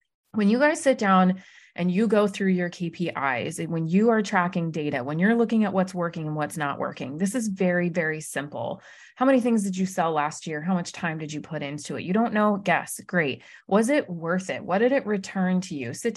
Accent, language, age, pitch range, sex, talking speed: American, English, 30-49, 165-210 Hz, female, 235 wpm